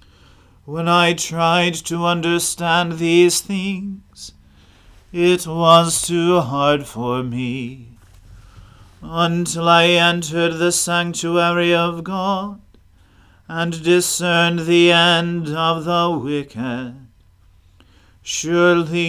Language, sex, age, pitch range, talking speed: English, male, 40-59, 125-175 Hz, 90 wpm